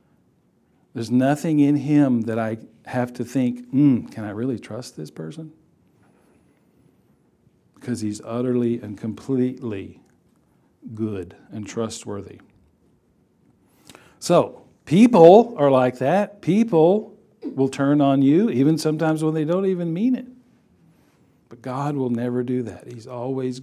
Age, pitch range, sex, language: 50-69, 115-155 Hz, male, English